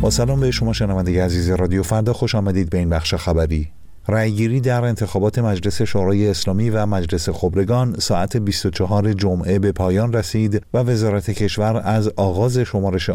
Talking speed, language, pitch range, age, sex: 160 wpm, Persian, 95-115 Hz, 50-69, male